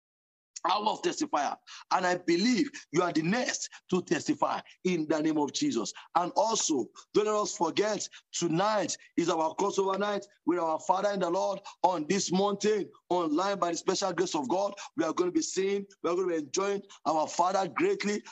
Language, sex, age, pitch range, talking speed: English, male, 50-69, 180-275 Hz, 195 wpm